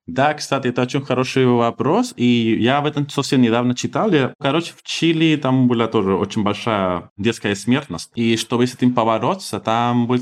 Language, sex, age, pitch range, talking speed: Russian, male, 20-39, 100-125 Hz, 175 wpm